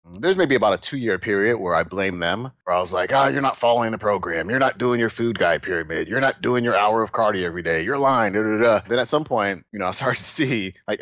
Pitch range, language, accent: 90-105 Hz, English, American